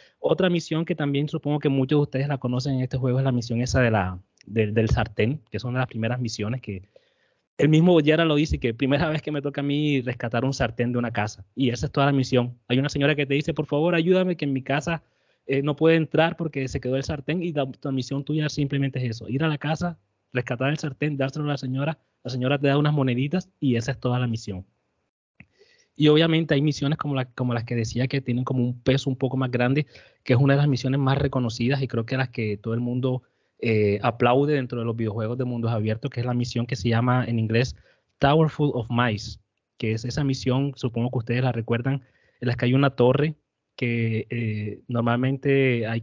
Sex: male